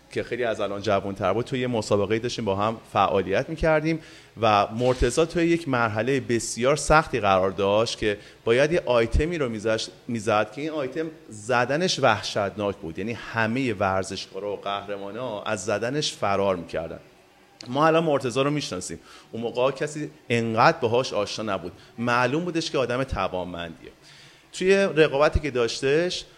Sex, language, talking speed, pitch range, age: male, Persian, 150 wpm, 110-155 Hz, 30-49